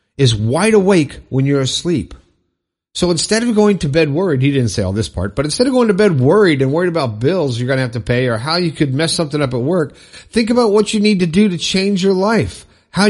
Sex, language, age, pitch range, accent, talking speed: male, English, 50-69, 120-175 Hz, American, 255 wpm